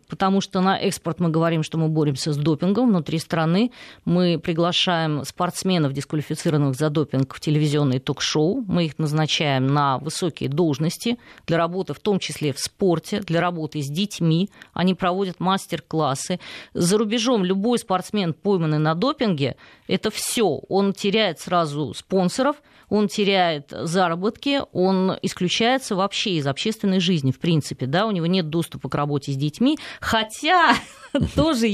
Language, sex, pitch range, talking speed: Russian, female, 160-220 Hz, 145 wpm